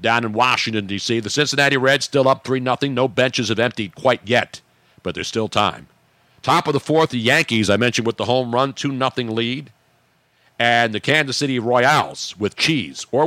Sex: male